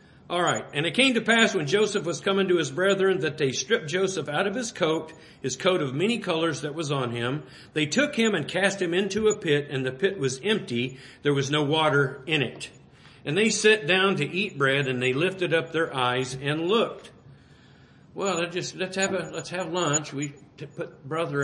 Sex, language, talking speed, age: male, English, 205 wpm, 50-69